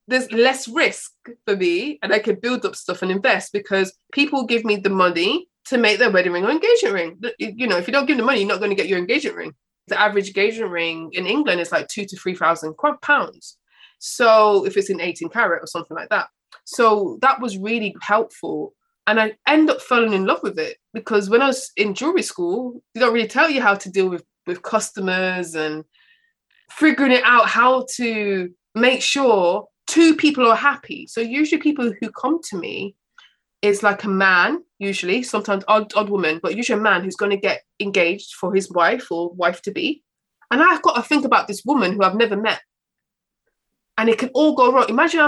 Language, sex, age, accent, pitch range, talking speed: English, female, 20-39, British, 195-290 Hz, 210 wpm